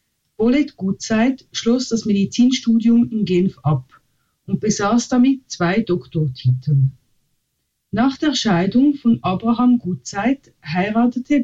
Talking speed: 100 wpm